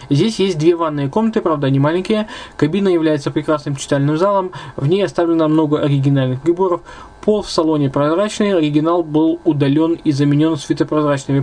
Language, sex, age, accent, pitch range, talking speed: Russian, male, 20-39, native, 140-170 Hz, 150 wpm